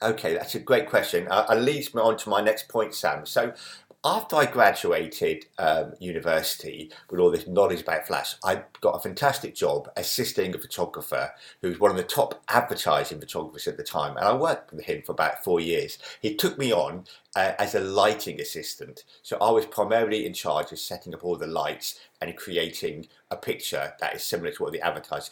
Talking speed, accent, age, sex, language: 205 wpm, British, 50-69, male, English